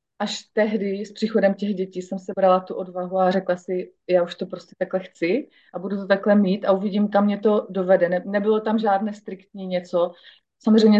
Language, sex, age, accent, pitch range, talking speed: Czech, female, 30-49, native, 185-220 Hz, 195 wpm